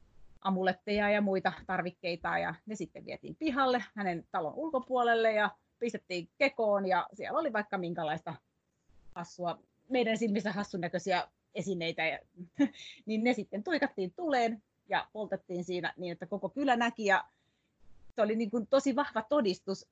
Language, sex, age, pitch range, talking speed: Finnish, female, 30-49, 185-240 Hz, 145 wpm